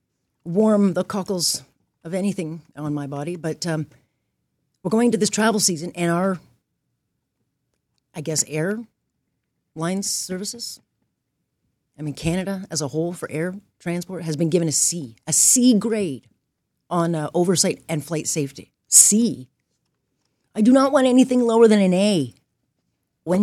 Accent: American